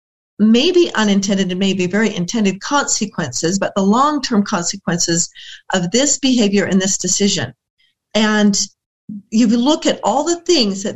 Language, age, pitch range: English, 40-59, 185-235 Hz